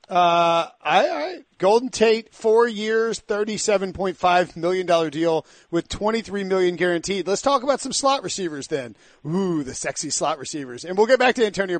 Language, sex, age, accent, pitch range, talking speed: English, male, 40-59, American, 160-195 Hz, 170 wpm